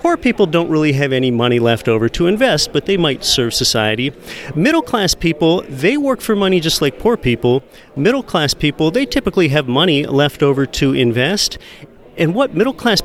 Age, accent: 40-59, American